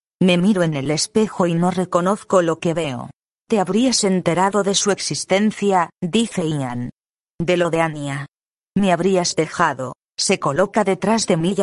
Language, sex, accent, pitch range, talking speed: Spanish, female, Spanish, 170-200 Hz, 165 wpm